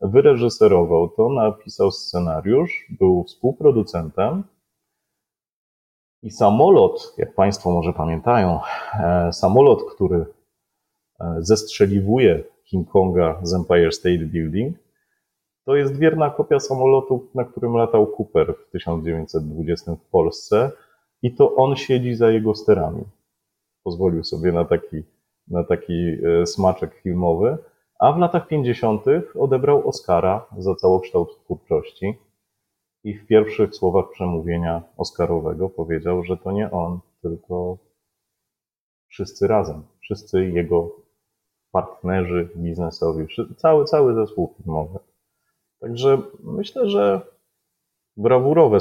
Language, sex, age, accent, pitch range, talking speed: Polish, male, 30-49, native, 85-135 Hz, 100 wpm